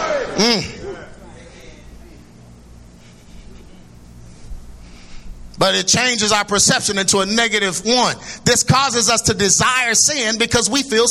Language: English